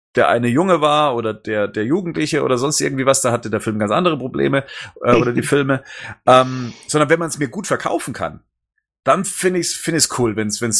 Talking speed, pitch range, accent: 240 wpm, 110-150 Hz, German